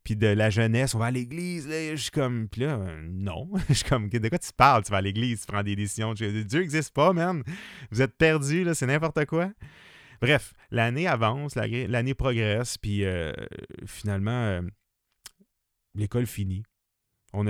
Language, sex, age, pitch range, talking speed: French, male, 30-49, 100-130 Hz, 190 wpm